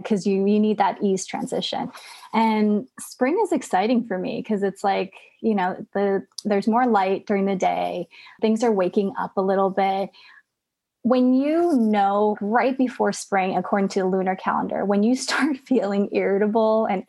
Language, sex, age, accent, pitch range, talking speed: English, female, 20-39, American, 200-255 Hz, 170 wpm